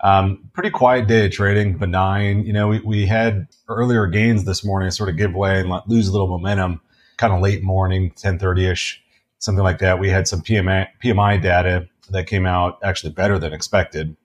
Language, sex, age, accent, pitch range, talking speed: English, male, 30-49, American, 90-100 Hz, 190 wpm